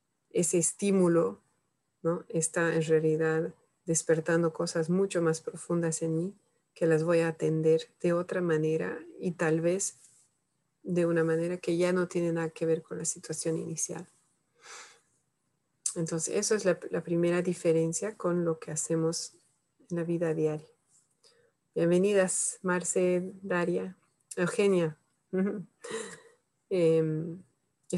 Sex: female